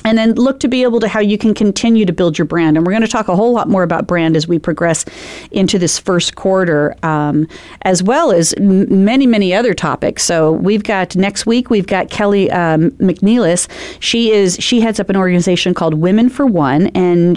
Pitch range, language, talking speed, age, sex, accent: 165-220 Hz, English, 220 wpm, 40-59, female, American